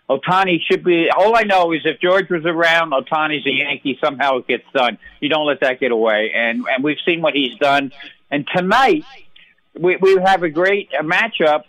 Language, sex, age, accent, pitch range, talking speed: English, male, 60-79, American, 140-180 Hz, 200 wpm